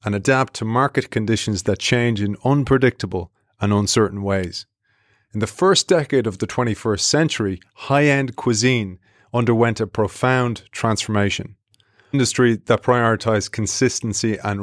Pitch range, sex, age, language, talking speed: 105-135 Hz, male, 30-49, English, 130 wpm